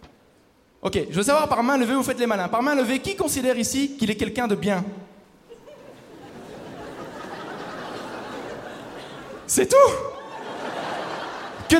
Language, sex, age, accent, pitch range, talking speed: French, male, 20-39, French, 215-270 Hz, 125 wpm